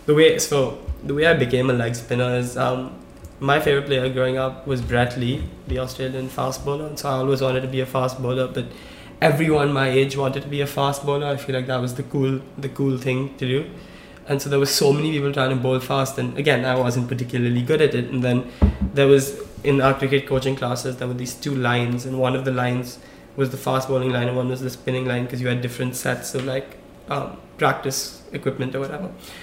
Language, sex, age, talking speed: English, male, 20-39, 240 wpm